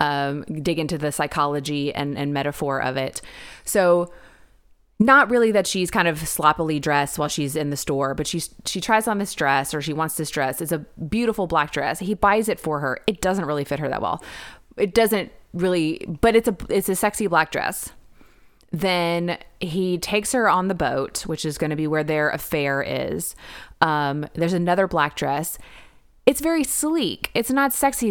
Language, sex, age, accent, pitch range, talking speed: English, female, 20-39, American, 150-195 Hz, 195 wpm